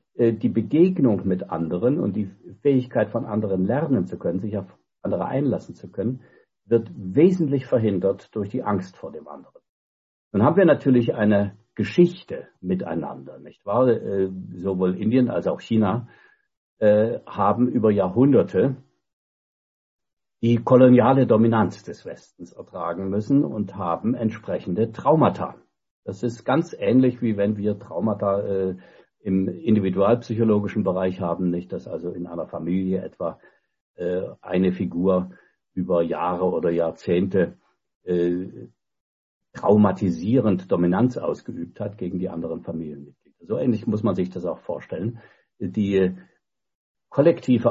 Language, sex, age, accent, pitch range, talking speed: English, male, 60-79, German, 90-115 Hz, 130 wpm